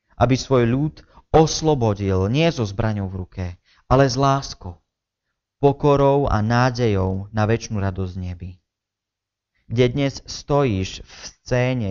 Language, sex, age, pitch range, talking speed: Slovak, male, 30-49, 95-115 Hz, 120 wpm